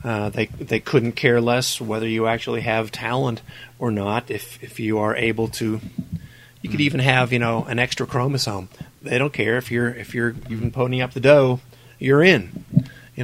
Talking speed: 220 wpm